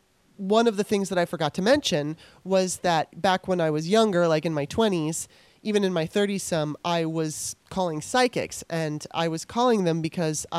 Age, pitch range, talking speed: 30-49, 150-190 Hz, 200 wpm